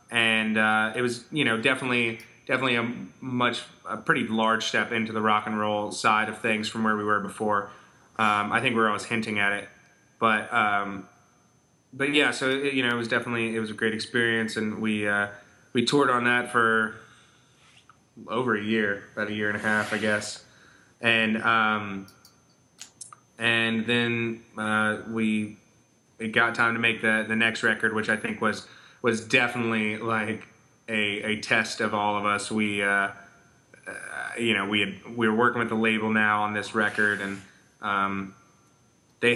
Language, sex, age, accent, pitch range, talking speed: English, male, 20-39, American, 105-115 Hz, 185 wpm